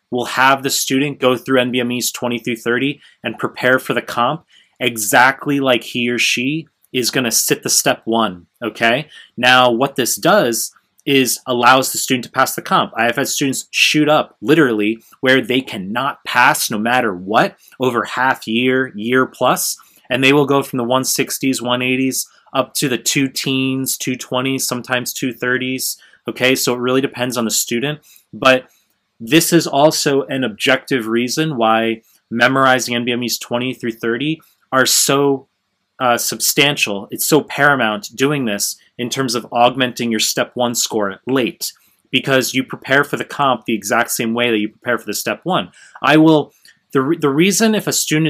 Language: English